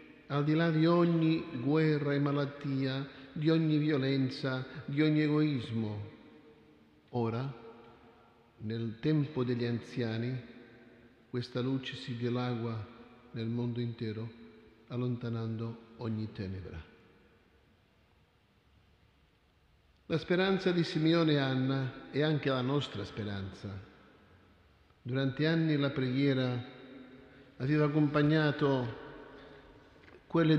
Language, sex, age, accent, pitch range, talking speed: Italian, male, 50-69, native, 115-150 Hz, 90 wpm